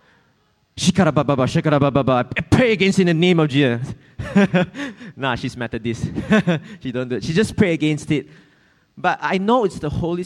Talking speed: 160 wpm